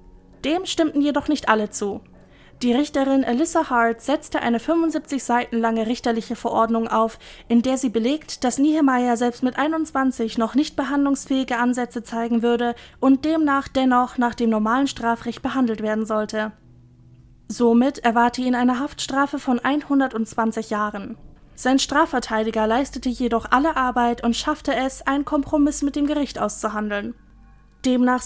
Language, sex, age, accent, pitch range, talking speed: German, female, 20-39, German, 230-275 Hz, 140 wpm